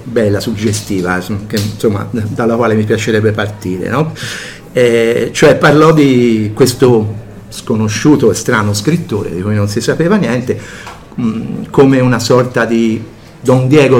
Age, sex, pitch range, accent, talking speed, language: 50-69, male, 110-135 Hz, native, 135 wpm, Italian